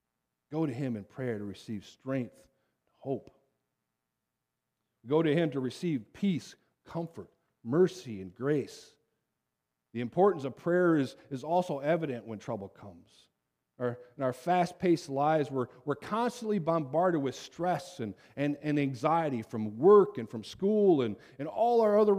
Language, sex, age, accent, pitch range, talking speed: English, male, 40-59, American, 110-165 Hz, 145 wpm